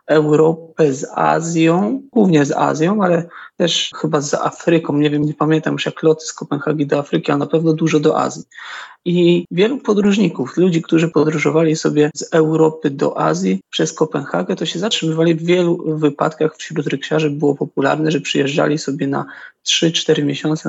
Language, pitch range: Polish, 145-170 Hz